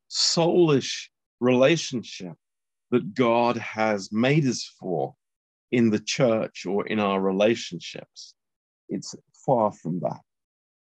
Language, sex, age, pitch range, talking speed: Romanian, male, 50-69, 90-125 Hz, 105 wpm